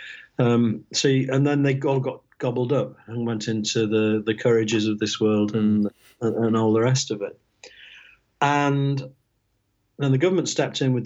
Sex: male